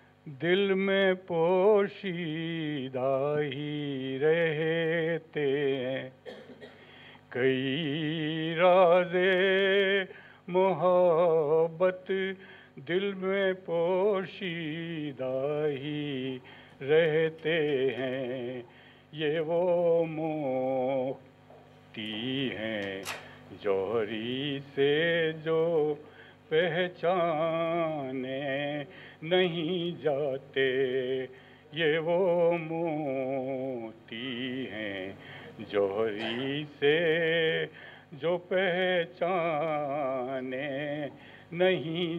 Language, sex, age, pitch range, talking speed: Urdu, male, 50-69, 130-180 Hz, 45 wpm